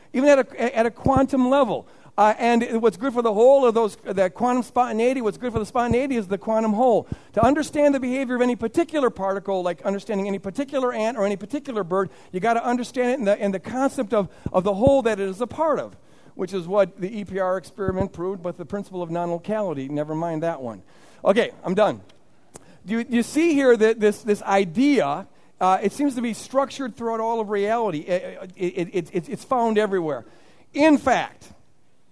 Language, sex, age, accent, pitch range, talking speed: English, male, 50-69, American, 180-235 Hz, 205 wpm